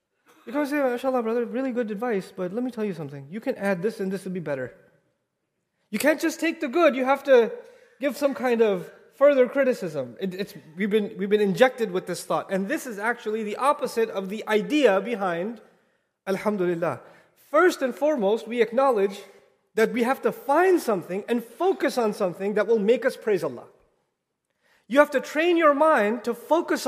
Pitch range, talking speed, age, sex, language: 205-275 Hz, 195 wpm, 30-49, male, English